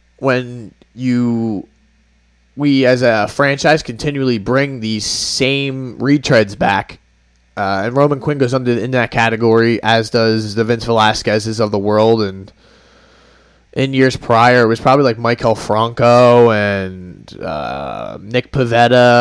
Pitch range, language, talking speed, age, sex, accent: 100-135 Hz, English, 135 wpm, 20-39, male, American